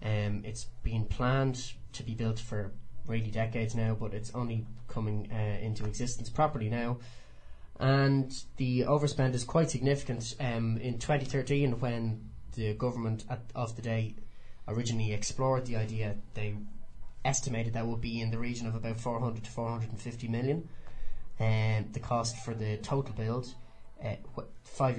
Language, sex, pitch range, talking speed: English, male, 110-125 Hz, 155 wpm